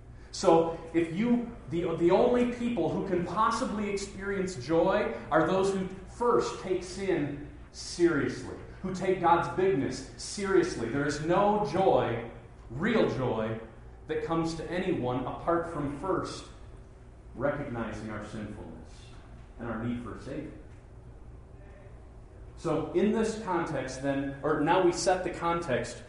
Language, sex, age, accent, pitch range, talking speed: English, male, 40-59, American, 120-180 Hz, 130 wpm